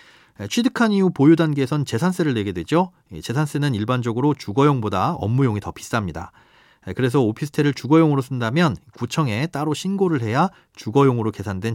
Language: Korean